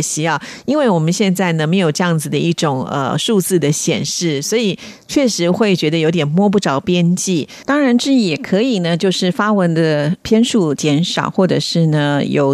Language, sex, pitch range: Chinese, female, 150-195 Hz